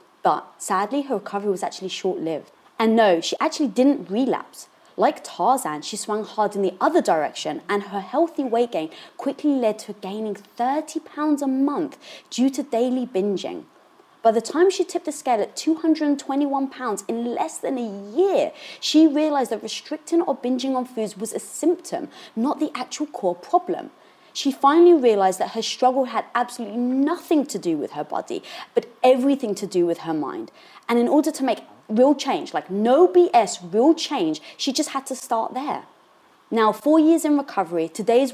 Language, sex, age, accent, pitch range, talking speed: English, female, 20-39, British, 205-295 Hz, 180 wpm